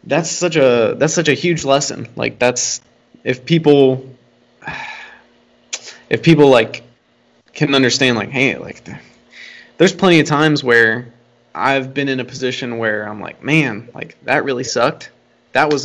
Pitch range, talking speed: 120-150 Hz, 150 wpm